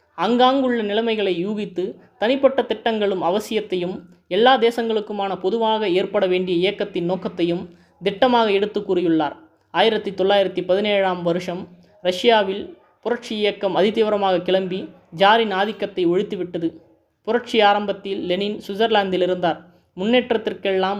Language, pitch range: Tamil, 180-210 Hz